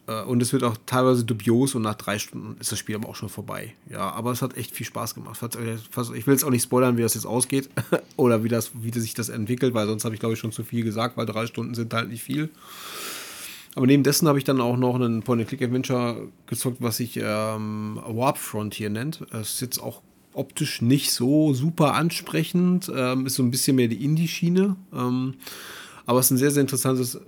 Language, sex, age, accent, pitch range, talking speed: German, male, 30-49, German, 115-135 Hz, 215 wpm